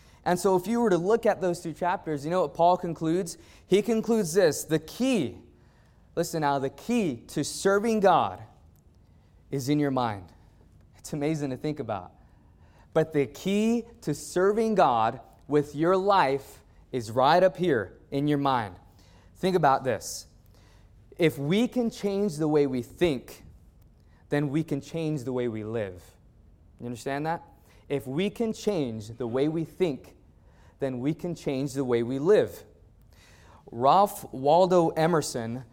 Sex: male